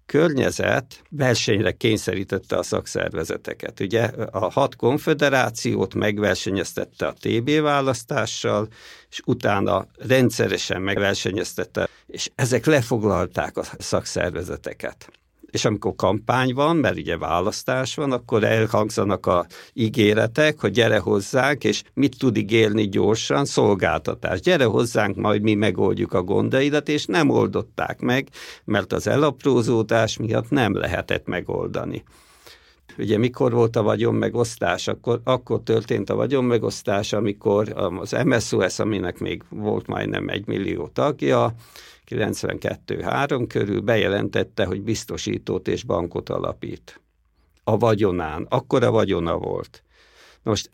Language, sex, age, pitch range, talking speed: Hungarian, male, 60-79, 105-125 Hz, 115 wpm